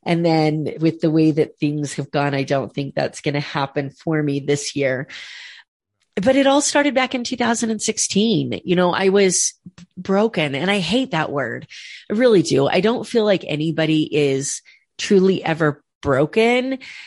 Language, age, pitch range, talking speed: English, 30-49, 155-205 Hz, 170 wpm